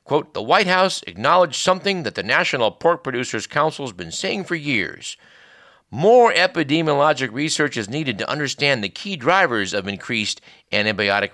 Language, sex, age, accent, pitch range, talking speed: English, male, 50-69, American, 105-160 Hz, 160 wpm